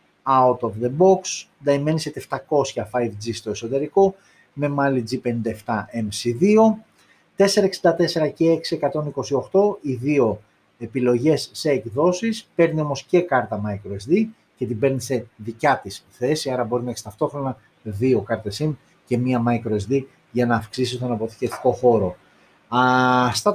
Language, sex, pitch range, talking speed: Greek, male, 120-170 Hz, 125 wpm